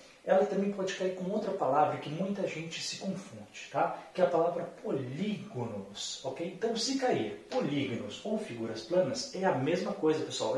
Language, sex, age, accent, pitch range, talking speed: Portuguese, male, 30-49, Brazilian, 155-220 Hz, 175 wpm